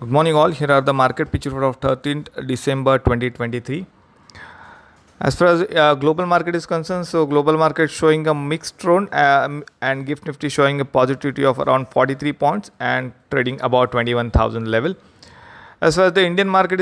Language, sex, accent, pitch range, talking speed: English, male, Indian, 125-160 Hz, 180 wpm